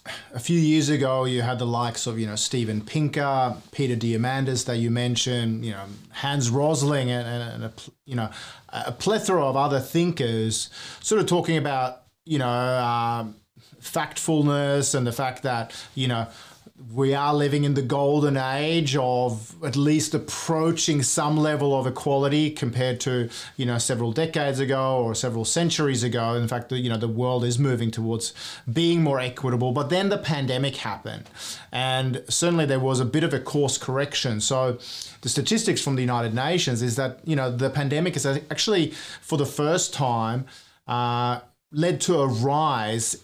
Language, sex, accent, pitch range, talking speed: English, male, Australian, 120-145 Hz, 170 wpm